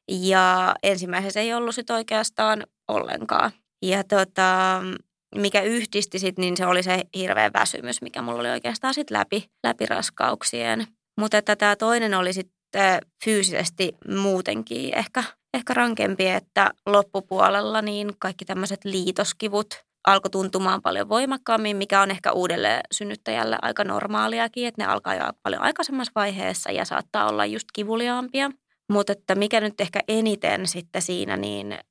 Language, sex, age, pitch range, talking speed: Finnish, female, 20-39, 185-215 Hz, 135 wpm